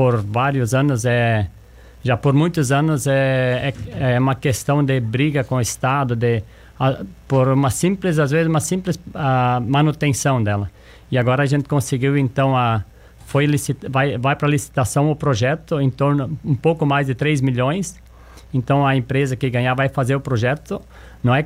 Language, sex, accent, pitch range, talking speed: Portuguese, male, Brazilian, 125-150 Hz, 180 wpm